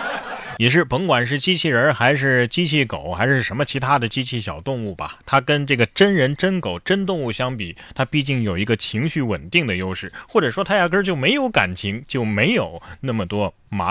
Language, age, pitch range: Chinese, 20-39, 105-160 Hz